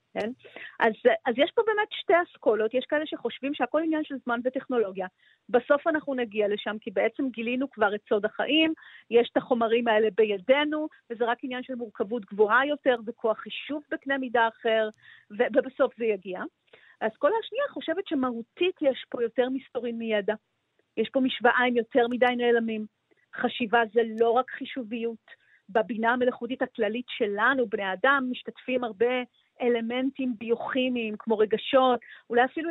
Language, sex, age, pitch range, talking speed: Hebrew, female, 40-59, 220-270 Hz, 150 wpm